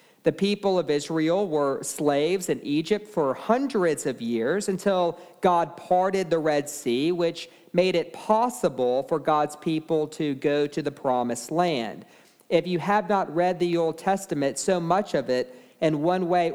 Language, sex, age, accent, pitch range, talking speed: English, male, 50-69, American, 145-185 Hz, 165 wpm